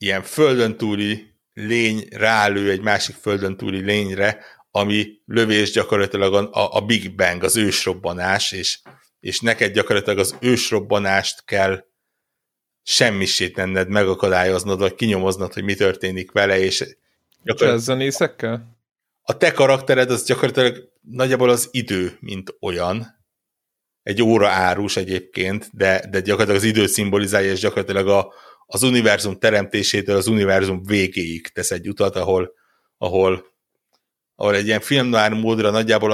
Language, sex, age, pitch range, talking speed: Hungarian, male, 60-79, 95-110 Hz, 125 wpm